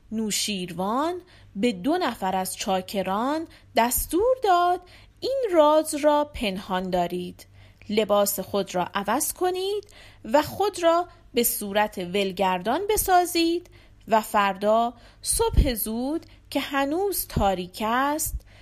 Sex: female